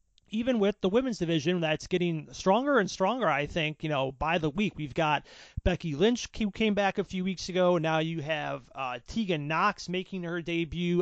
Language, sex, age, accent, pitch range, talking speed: English, male, 30-49, American, 150-185 Hz, 200 wpm